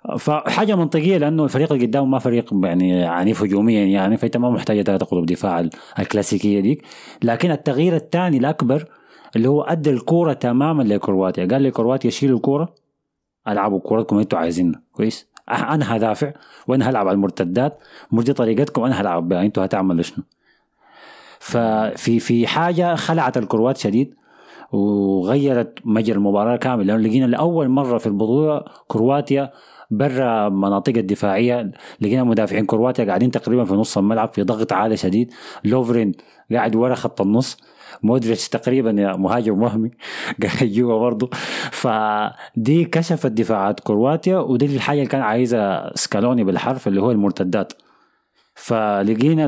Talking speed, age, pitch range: 135 wpm, 30-49, 105-135 Hz